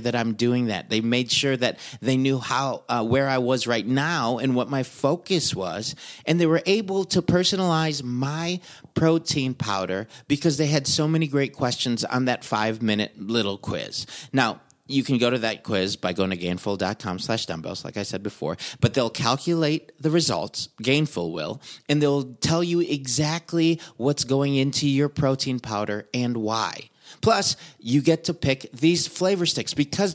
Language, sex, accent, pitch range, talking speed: English, male, American, 120-155 Hz, 175 wpm